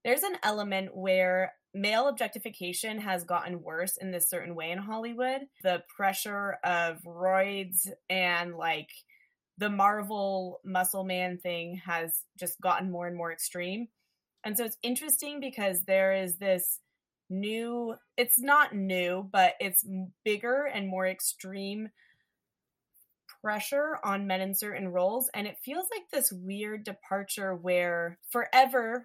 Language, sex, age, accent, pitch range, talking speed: English, female, 20-39, American, 175-210 Hz, 135 wpm